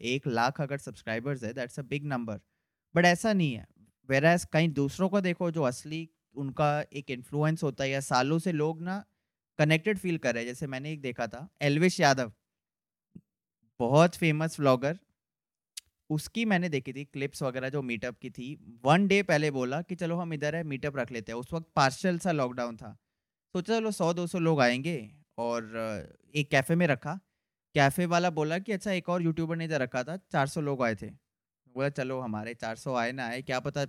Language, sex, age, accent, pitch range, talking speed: Hindi, male, 20-39, native, 125-170 Hz, 195 wpm